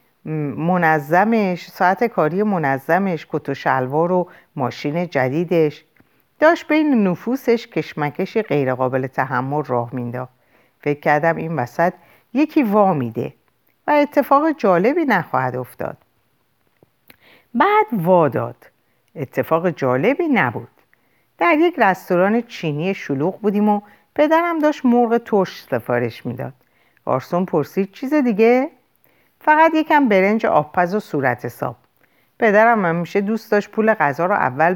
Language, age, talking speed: Persian, 50-69, 120 wpm